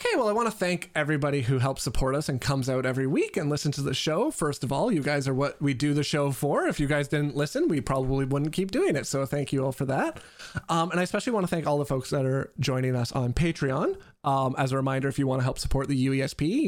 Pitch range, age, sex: 135-165 Hz, 20-39, male